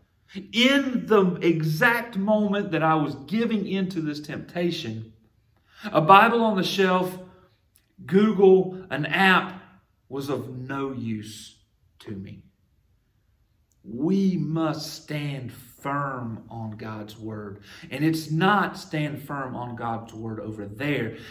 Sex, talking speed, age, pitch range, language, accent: male, 120 wpm, 40-59, 110-160 Hz, English, American